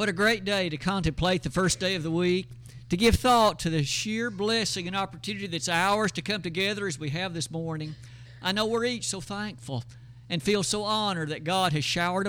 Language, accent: English, American